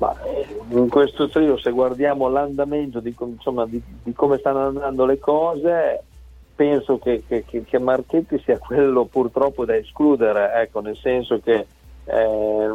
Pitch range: 110-140 Hz